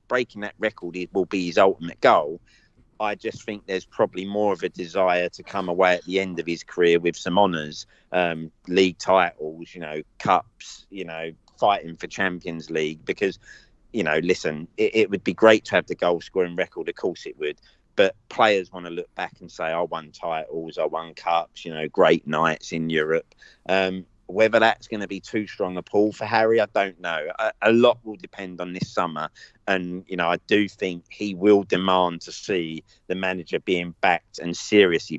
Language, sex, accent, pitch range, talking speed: English, male, British, 85-100 Hz, 205 wpm